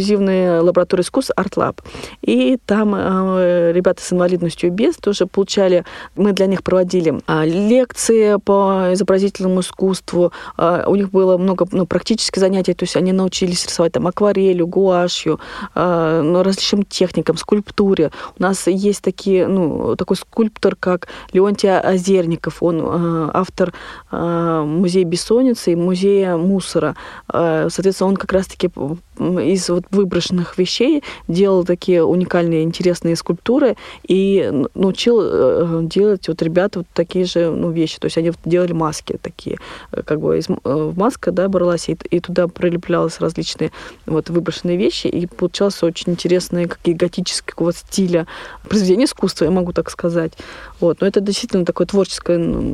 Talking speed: 145 wpm